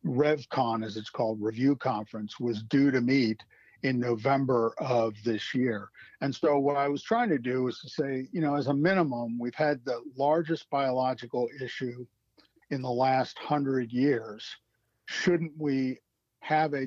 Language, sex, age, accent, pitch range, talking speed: English, male, 50-69, American, 120-145 Hz, 165 wpm